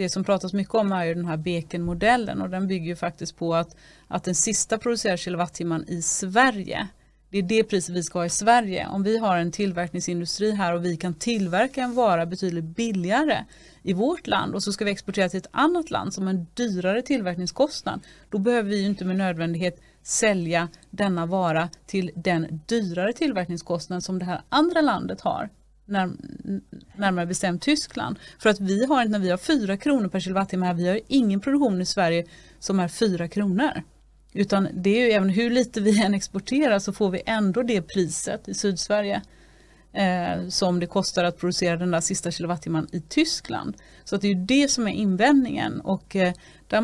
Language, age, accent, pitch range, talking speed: English, 30-49, Swedish, 175-215 Hz, 190 wpm